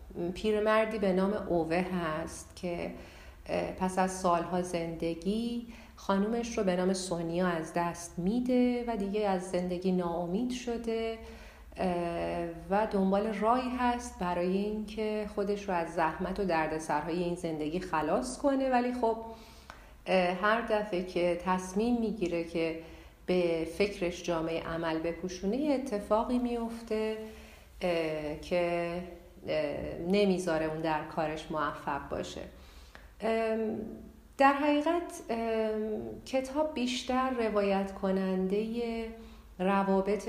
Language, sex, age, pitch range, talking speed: Persian, female, 40-59, 170-220 Hz, 105 wpm